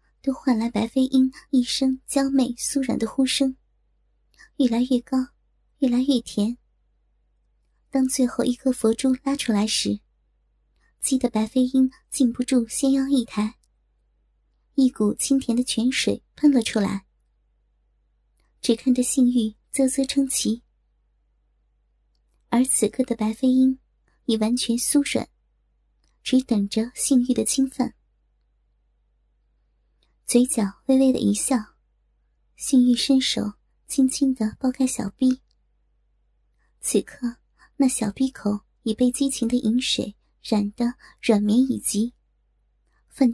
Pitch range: 205-260 Hz